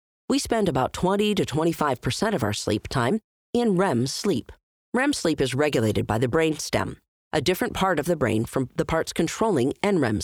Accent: American